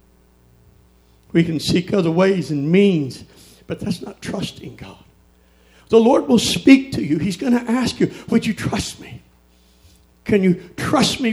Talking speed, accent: 165 wpm, American